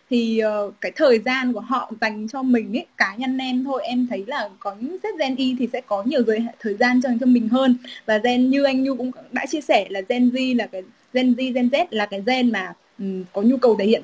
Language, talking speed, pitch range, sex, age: Vietnamese, 255 wpm, 215-265 Hz, female, 10-29